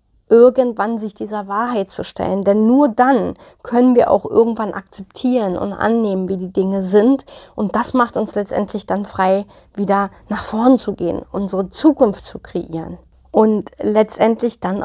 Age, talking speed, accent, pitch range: 30-49, 160 wpm, German, 195-245 Hz